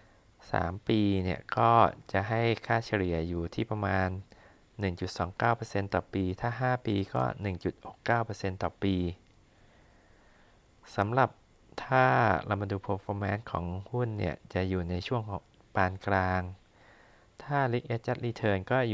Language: Thai